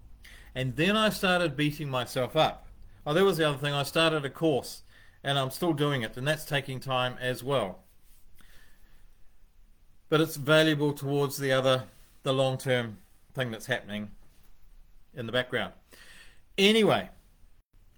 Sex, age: male, 40-59